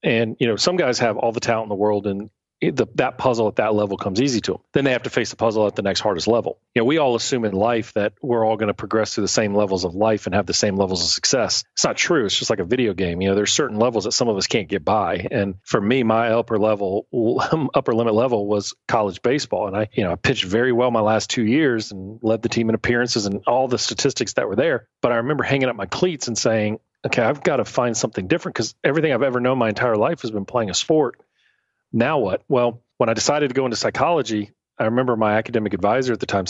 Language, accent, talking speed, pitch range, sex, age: English, American, 275 wpm, 100-120 Hz, male, 40-59